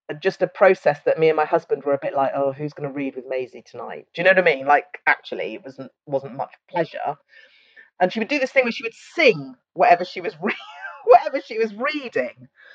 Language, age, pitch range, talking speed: English, 30-49, 150-225 Hz, 235 wpm